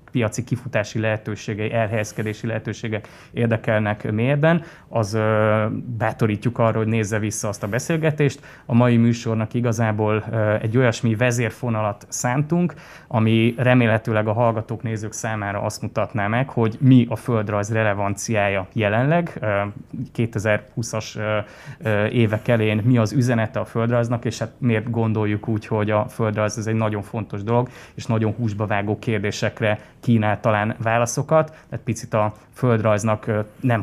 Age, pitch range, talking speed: 20-39, 105-120 Hz, 140 wpm